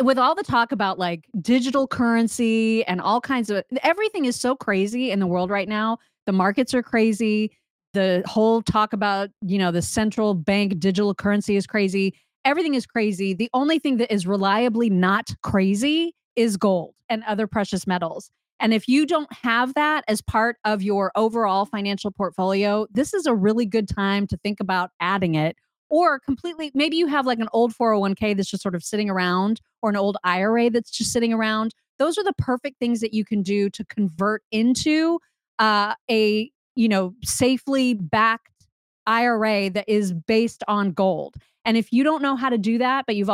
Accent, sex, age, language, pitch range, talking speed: American, female, 30-49, English, 200-250 Hz, 190 wpm